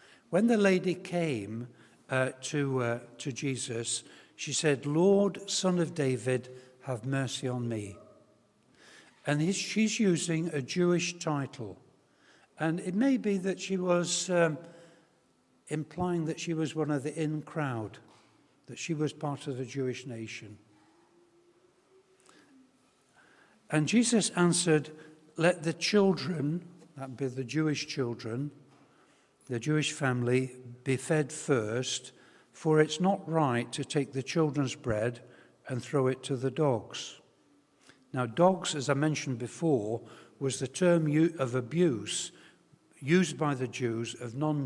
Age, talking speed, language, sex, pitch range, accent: 60-79, 135 wpm, English, male, 130-170 Hz, British